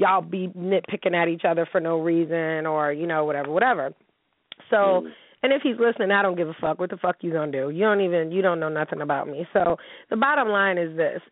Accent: American